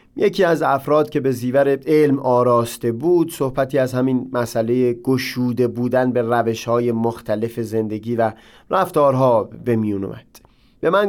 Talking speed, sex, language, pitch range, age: 145 wpm, male, Persian, 120-150 Hz, 30-49